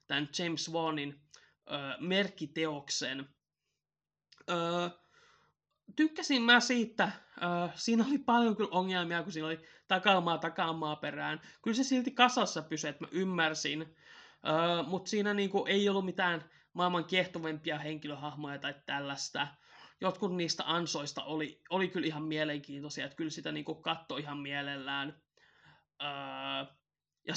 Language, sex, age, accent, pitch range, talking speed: Finnish, male, 20-39, native, 150-190 Hz, 120 wpm